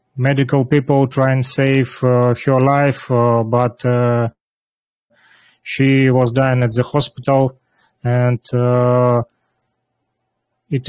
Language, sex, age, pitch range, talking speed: Russian, male, 30-49, 120-135 Hz, 110 wpm